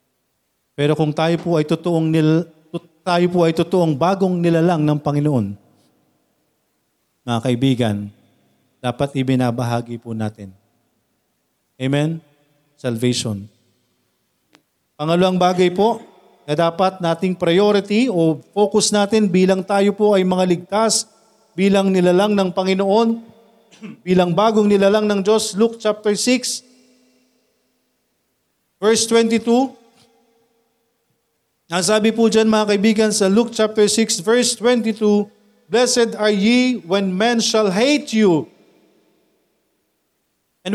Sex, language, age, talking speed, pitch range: male, Filipino, 40-59, 105 wpm, 165-230 Hz